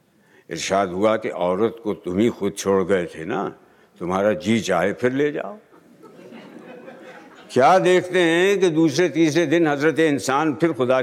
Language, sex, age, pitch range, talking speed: Hindi, male, 60-79, 115-180 Hz, 160 wpm